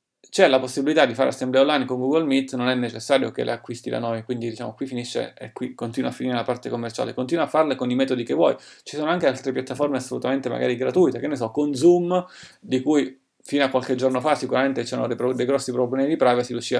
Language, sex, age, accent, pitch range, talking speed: Italian, male, 30-49, native, 120-135 Hz, 240 wpm